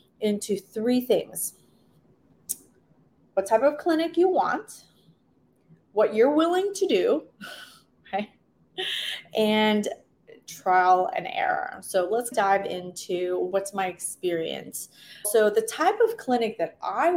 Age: 30-49